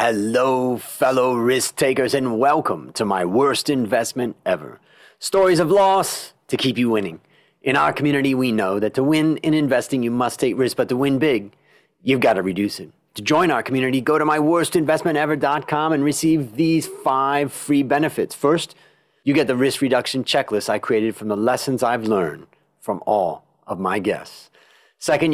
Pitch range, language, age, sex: 120-155 Hz, English, 30-49, male